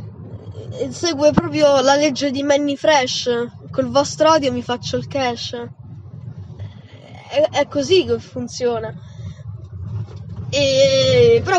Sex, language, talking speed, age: female, Italian, 110 wpm, 10-29